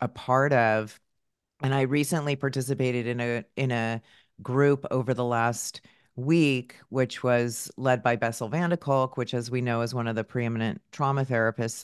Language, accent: English, American